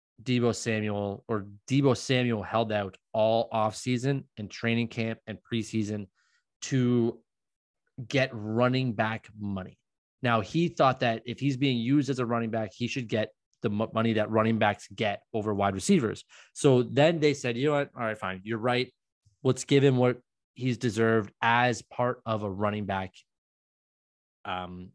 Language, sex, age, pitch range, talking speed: English, male, 20-39, 105-130 Hz, 165 wpm